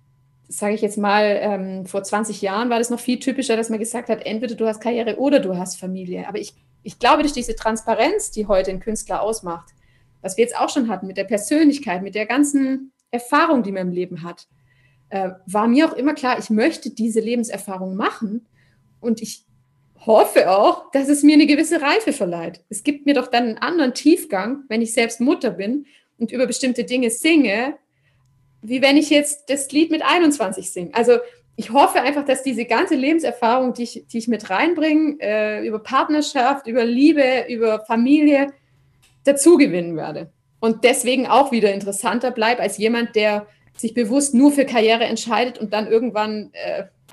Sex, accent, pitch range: female, German, 190-260 Hz